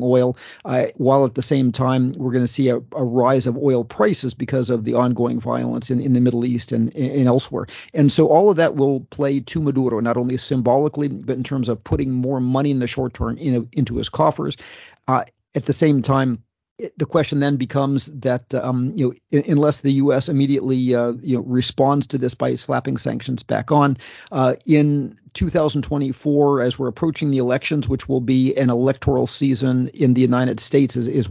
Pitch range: 125-145 Hz